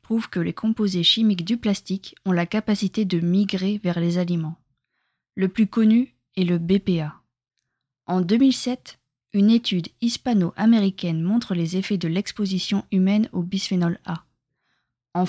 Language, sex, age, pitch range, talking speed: French, female, 20-39, 180-215 Hz, 135 wpm